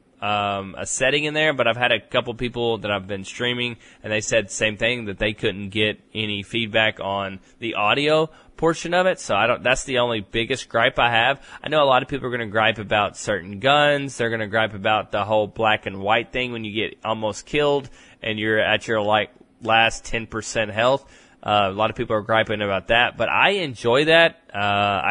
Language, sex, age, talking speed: English, male, 20-39, 220 wpm